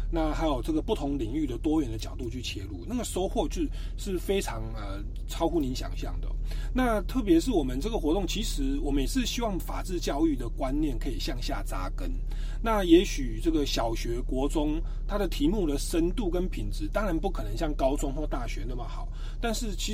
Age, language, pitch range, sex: 30-49, Chinese, 130-200 Hz, male